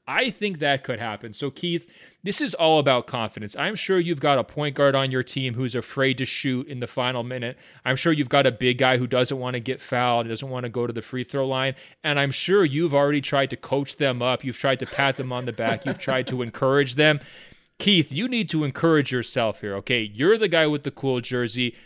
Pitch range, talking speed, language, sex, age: 120-140 Hz, 245 wpm, English, male, 30-49